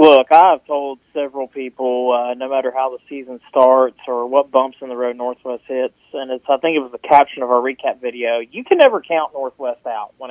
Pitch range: 130-155 Hz